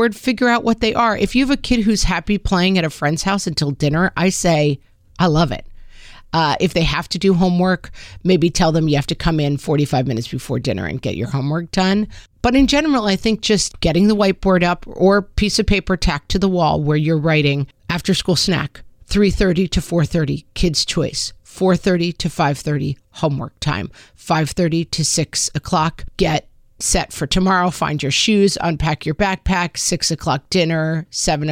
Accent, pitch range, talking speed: American, 155-195 Hz, 190 wpm